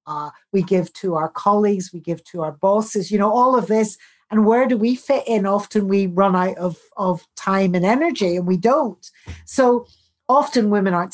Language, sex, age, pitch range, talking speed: English, female, 50-69, 190-240 Hz, 205 wpm